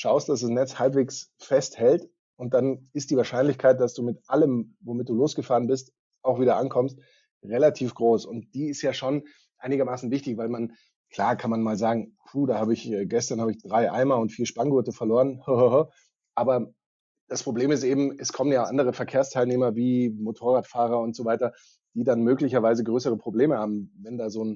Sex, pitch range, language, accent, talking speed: male, 115-135 Hz, German, German, 185 wpm